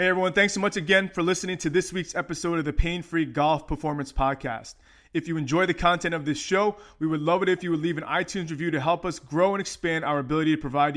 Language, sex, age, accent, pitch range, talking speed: English, male, 20-39, American, 150-175 Hz, 255 wpm